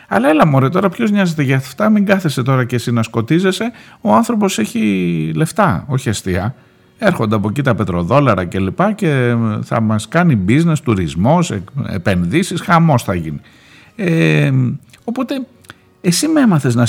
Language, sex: Greek, male